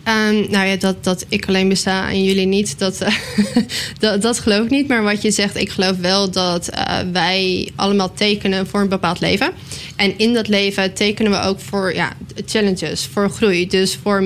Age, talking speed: 10-29, 200 wpm